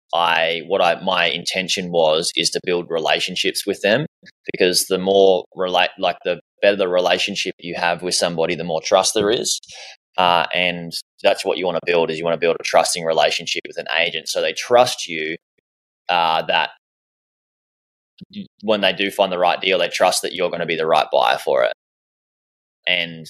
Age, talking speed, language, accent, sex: 20-39, 195 wpm, English, Australian, male